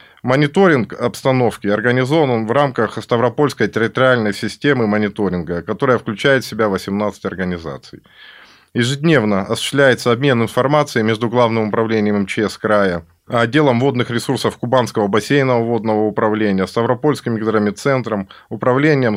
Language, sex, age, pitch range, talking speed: Russian, male, 20-39, 110-140 Hz, 105 wpm